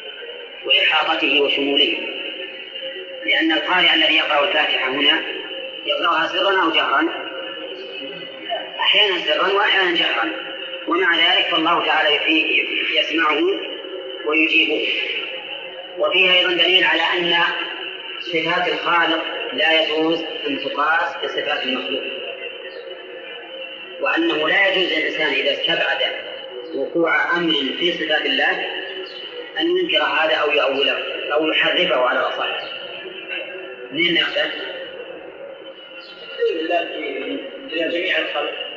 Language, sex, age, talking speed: Arabic, female, 30-49, 80 wpm